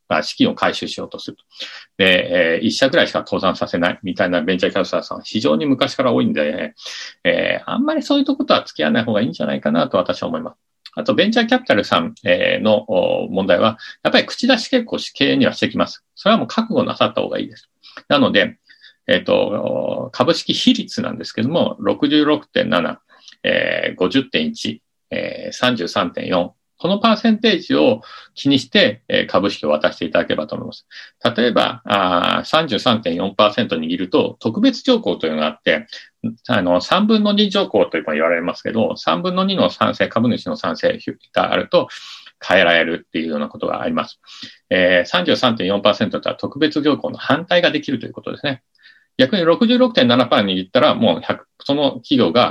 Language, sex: Japanese, male